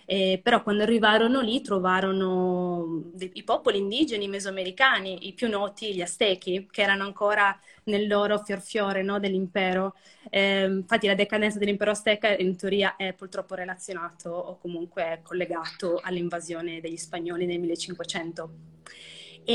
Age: 20-39